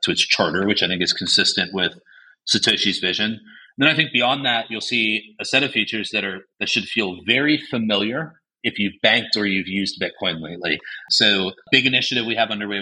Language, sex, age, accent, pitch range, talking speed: English, male, 30-49, American, 95-115 Hz, 205 wpm